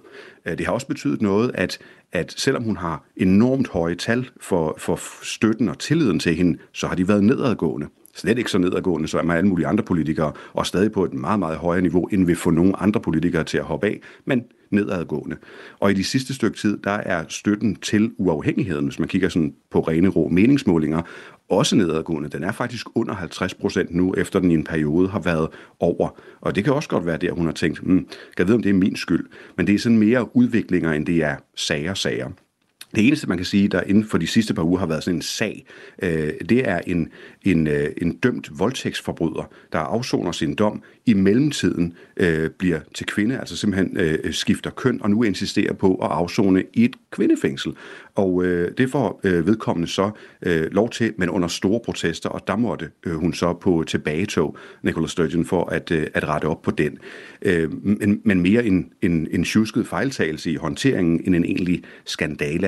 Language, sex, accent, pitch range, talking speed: Danish, male, native, 85-105 Hz, 205 wpm